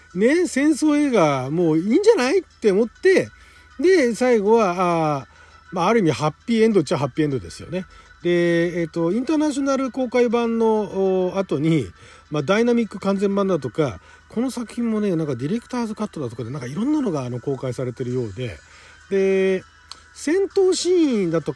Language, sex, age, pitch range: Japanese, male, 40-59, 150-235 Hz